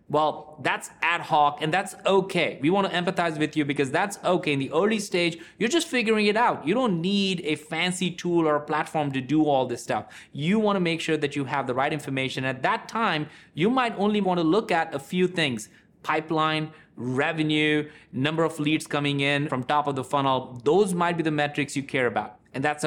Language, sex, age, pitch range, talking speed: English, male, 30-49, 140-175 Hz, 215 wpm